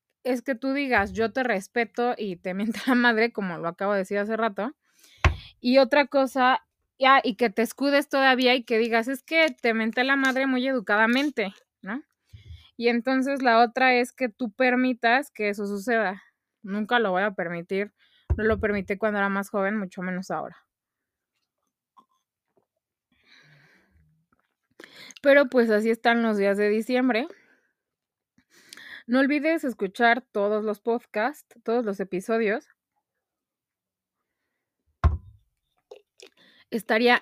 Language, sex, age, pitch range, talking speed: Spanish, female, 20-39, 205-255 Hz, 135 wpm